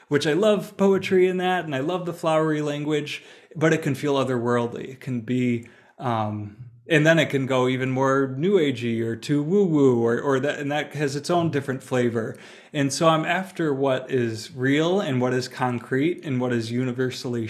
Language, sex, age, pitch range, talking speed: English, male, 30-49, 120-145 Hz, 200 wpm